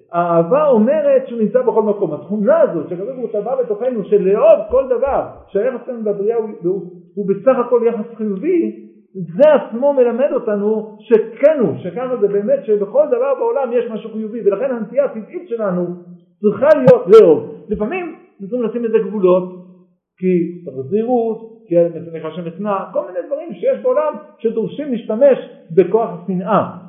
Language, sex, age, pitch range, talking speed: Hebrew, male, 50-69, 185-250 Hz, 140 wpm